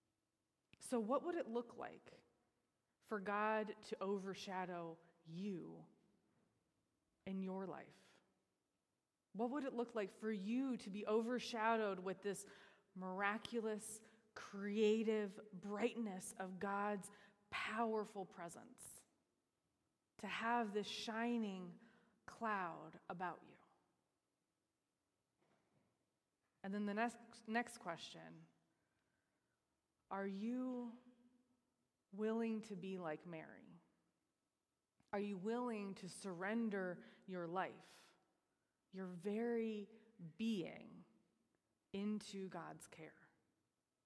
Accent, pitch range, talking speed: American, 190-225 Hz, 90 wpm